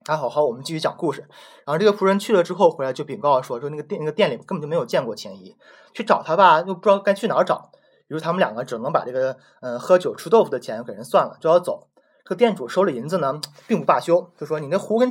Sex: male